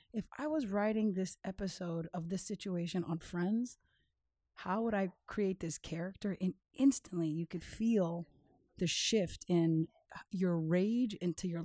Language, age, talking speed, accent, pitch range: English, 30-49, 150 wpm, American, 175-205 Hz